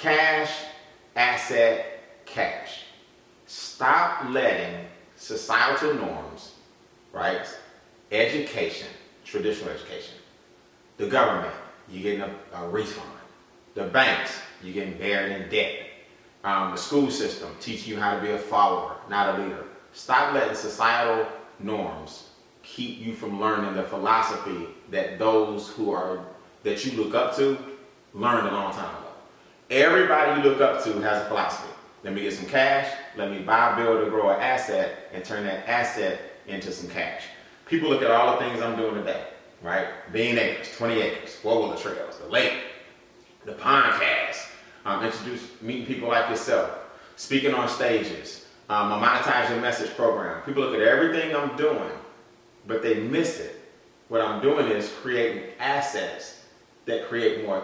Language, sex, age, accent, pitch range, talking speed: English, male, 30-49, American, 105-150 Hz, 150 wpm